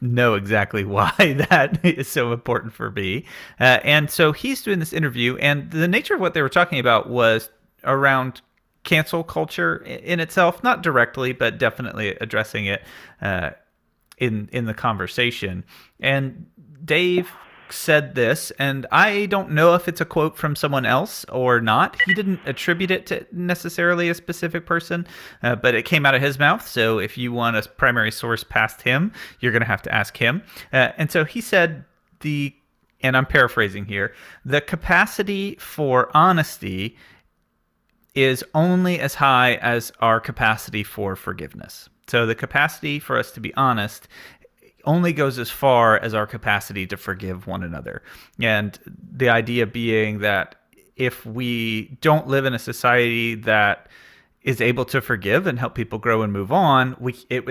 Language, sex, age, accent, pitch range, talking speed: English, male, 30-49, American, 110-155 Hz, 165 wpm